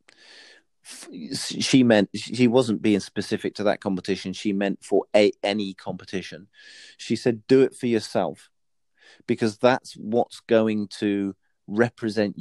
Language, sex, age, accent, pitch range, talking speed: English, male, 40-59, British, 100-125 Hz, 125 wpm